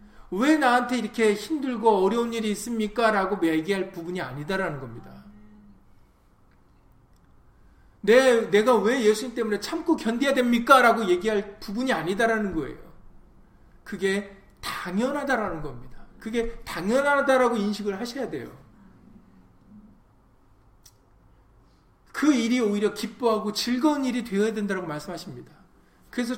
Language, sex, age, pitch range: Korean, male, 40-59, 180-255 Hz